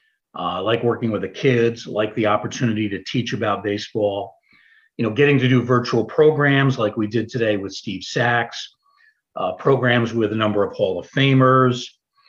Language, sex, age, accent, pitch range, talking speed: English, male, 50-69, American, 115-135 Hz, 175 wpm